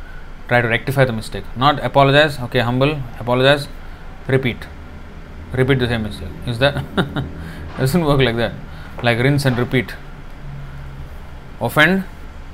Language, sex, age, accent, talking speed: English, male, 20-39, Indian, 125 wpm